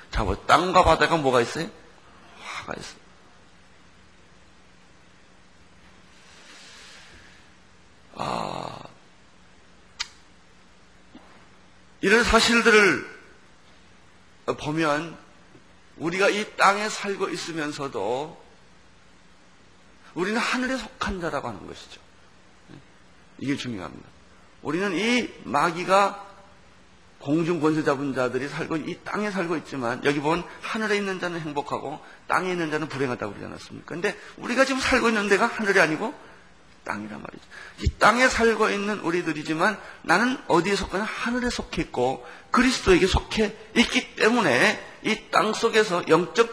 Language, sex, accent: Korean, male, native